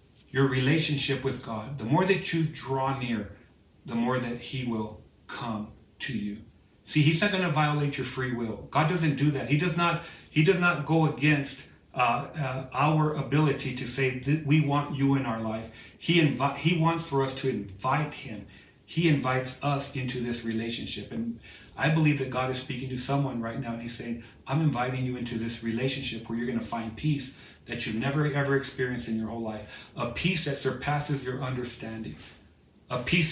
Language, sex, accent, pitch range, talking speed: English, male, American, 115-150 Hz, 195 wpm